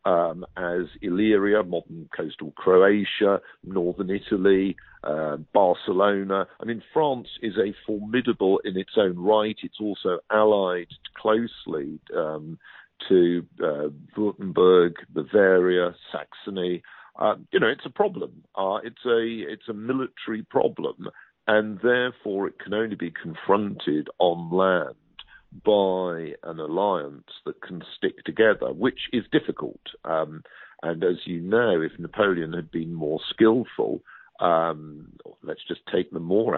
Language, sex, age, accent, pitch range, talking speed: English, male, 50-69, British, 85-105 Hz, 130 wpm